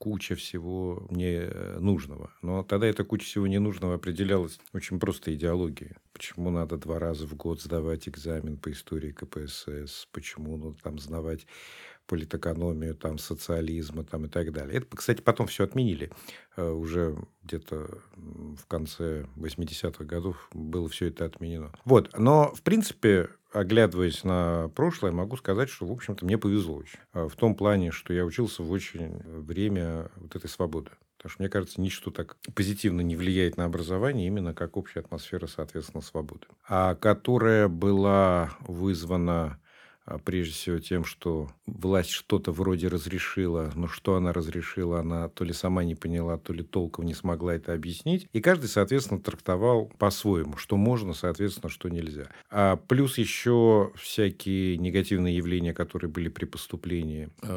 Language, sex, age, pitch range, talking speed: Russian, male, 50-69, 80-100 Hz, 150 wpm